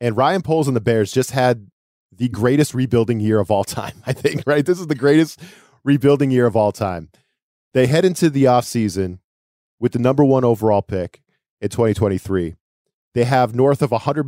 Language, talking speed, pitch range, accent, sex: English, 195 wpm, 110-130 Hz, American, male